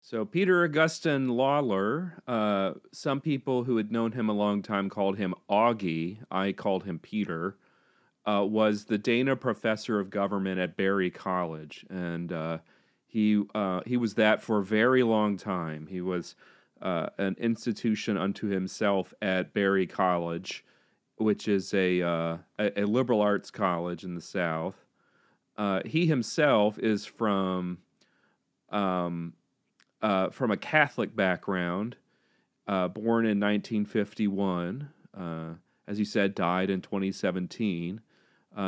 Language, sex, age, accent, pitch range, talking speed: English, male, 40-59, American, 95-115 Hz, 135 wpm